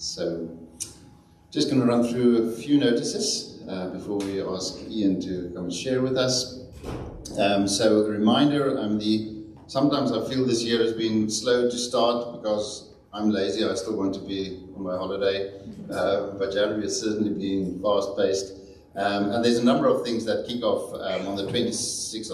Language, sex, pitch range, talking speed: English, male, 95-115 Hz, 185 wpm